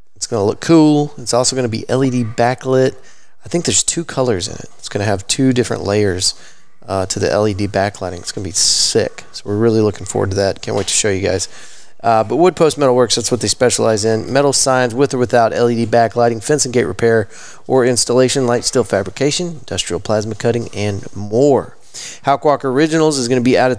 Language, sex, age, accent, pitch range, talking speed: English, male, 30-49, American, 110-135 Hz, 220 wpm